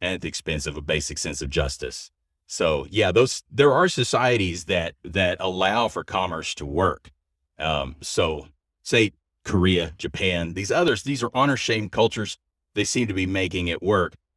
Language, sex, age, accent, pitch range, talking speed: English, male, 40-59, American, 80-105 Hz, 175 wpm